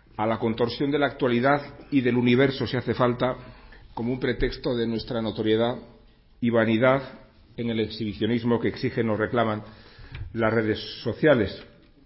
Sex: male